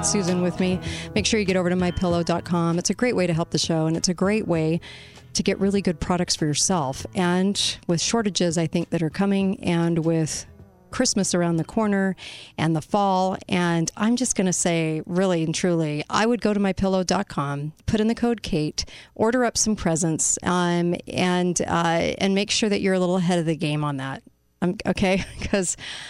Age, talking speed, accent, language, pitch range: 40-59, 205 wpm, American, English, 170-200 Hz